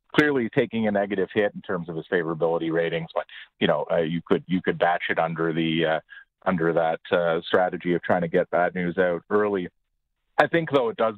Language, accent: English, American